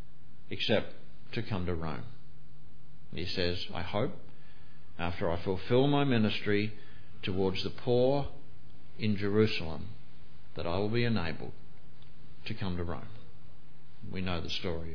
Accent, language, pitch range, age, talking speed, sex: Australian, English, 95-130 Hz, 50-69, 130 wpm, male